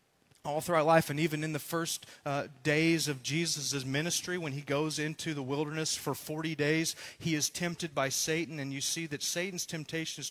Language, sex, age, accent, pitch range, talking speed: English, male, 40-59, American, 150-195 Hz, 205 wpm